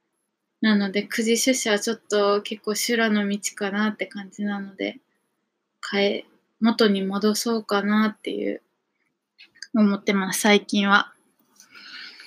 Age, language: 20-39, Japanese